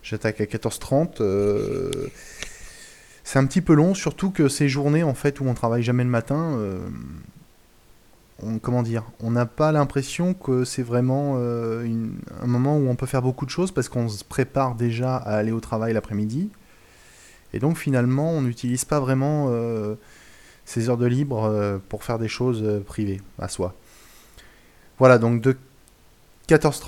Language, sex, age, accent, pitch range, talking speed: French, male, 20-39, French, 115-140 Hz, 175 wpm